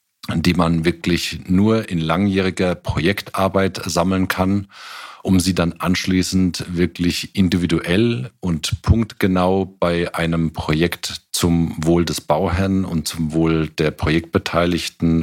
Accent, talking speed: German, 115 wpm